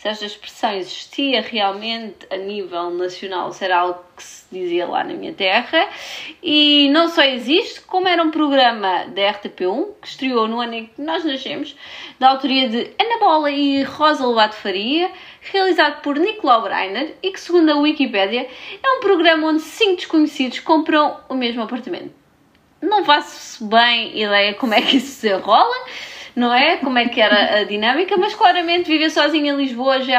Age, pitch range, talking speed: 20-39, 235-330 Hz, 180 wpm